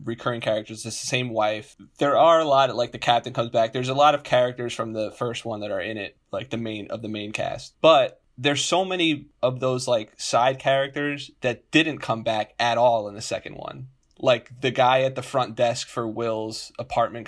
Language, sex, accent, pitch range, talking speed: English, male, American, 110-135 Hz, 220 wpm